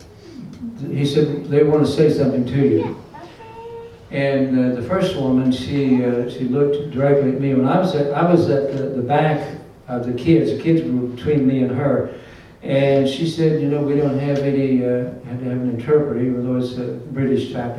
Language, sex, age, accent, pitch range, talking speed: English, male, 60-79, American, 125-145 Hz, 205 wpm